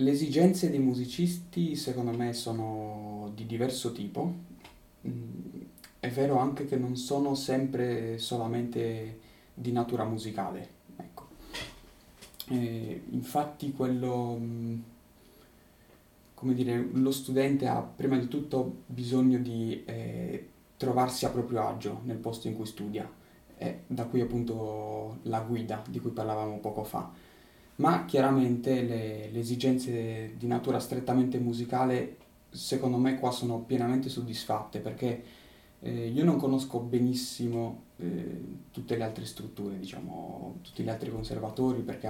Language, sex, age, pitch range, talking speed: Italian, male, 20-39, 110-130 Hz, 125 wpm